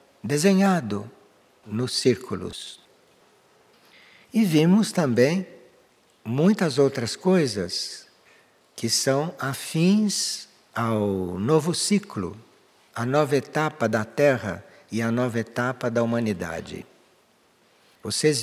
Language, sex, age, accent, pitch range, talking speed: Portuguese, male, 60-79, Brazilian, 115-175 Hz, 90 wpm